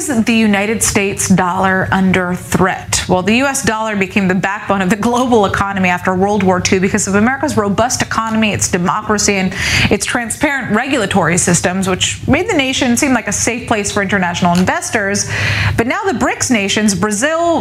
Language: English